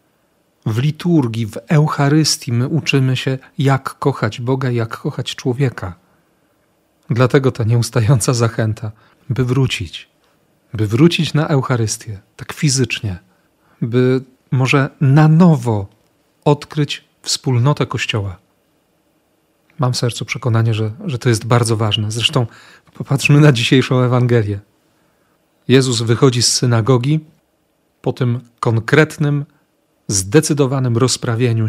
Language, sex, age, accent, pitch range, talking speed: Polish, male, 40-59, native, 115-150 Hz, 105 wpm